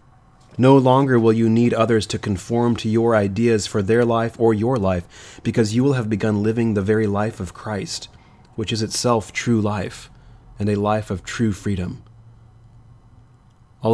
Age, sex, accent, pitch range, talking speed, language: 30-49, male, American, 100-115 Hz, 170 wpm, English